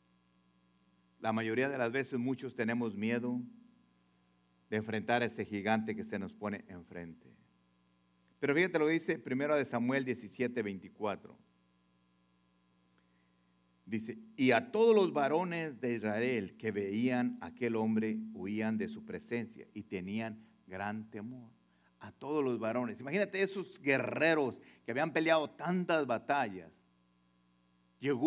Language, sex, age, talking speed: English, male, 50-69, 130 wpm